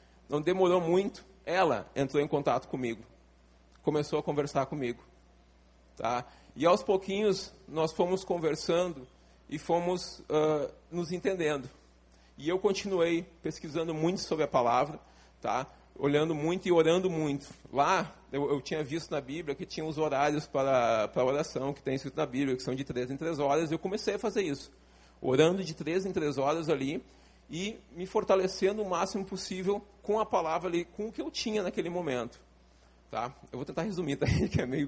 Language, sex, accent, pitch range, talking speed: Portuguese, male, Brazilian, 130-180 Hz, 175 wpm